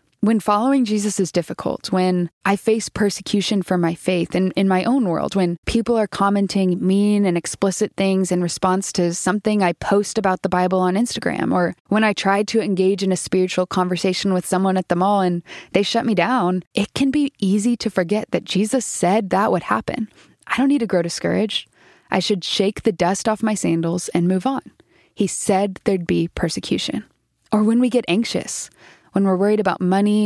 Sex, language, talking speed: female, English, 200 wpm